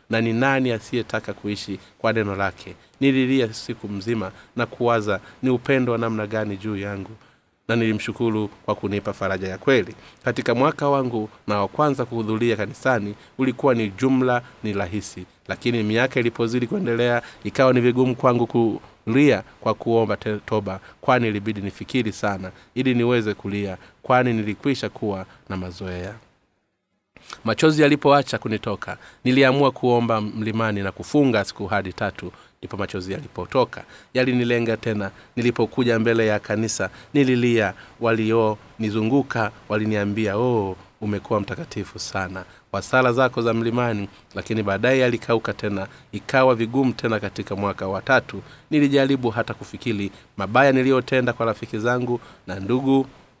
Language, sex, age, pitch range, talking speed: Swahili, male, 30-49, 105-125 Hz, 135 wpm